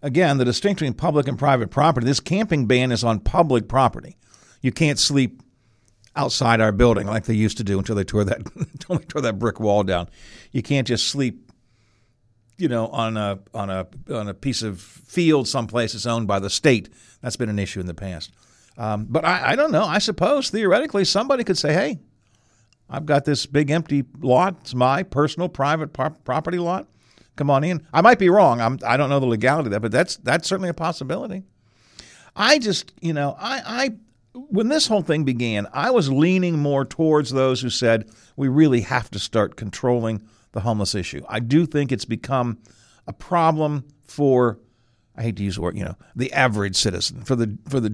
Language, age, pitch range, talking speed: English, 50-69, 110-155 Hz, 205 wpm